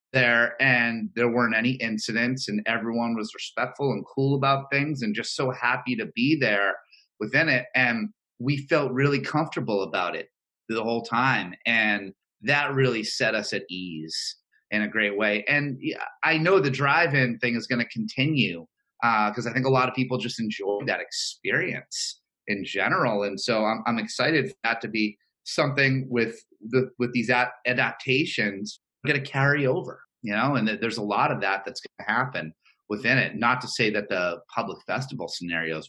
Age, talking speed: 30-49, 180 wpm